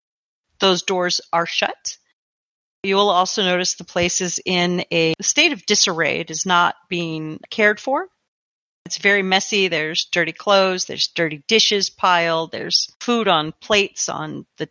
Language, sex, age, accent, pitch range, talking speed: English, female, 40-59, American, 175-225 Hz, 155 wpm